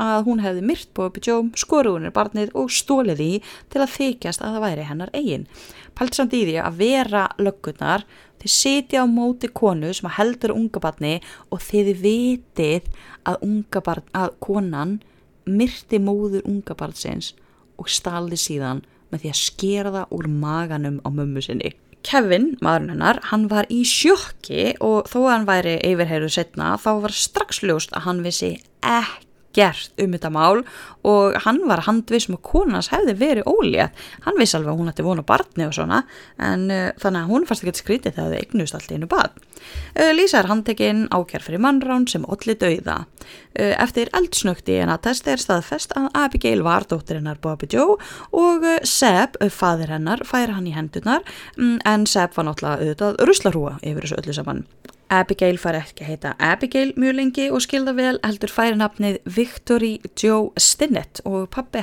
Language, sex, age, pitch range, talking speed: English, female, 20-39, 175-240 Hz, 160 wpm